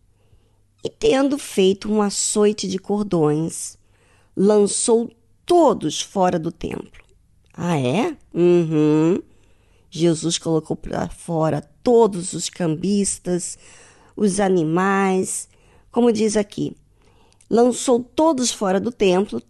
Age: 50-69